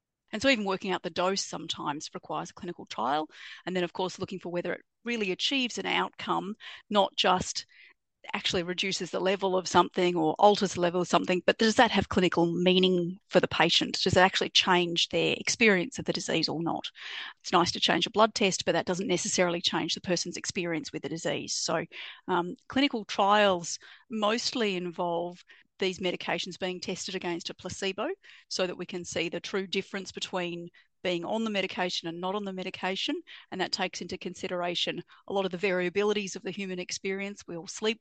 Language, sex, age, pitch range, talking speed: English, female, 40-59, 175-205 Hz, 195 wpm